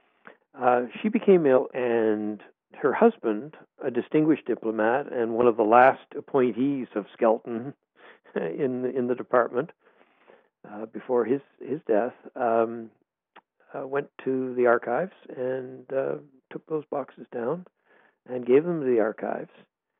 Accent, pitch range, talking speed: American, 115-130 Hz, 140 wpm